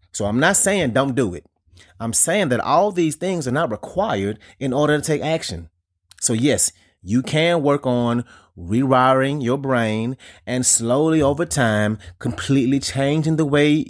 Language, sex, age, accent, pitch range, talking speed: English, male, 30-49, American, 90-135 Hz, 165 wpm